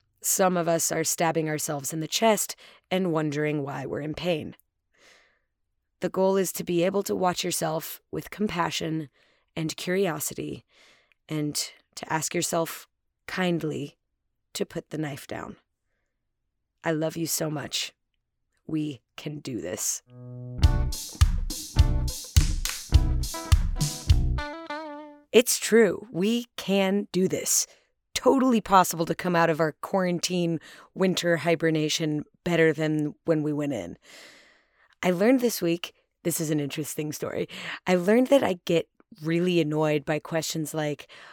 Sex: female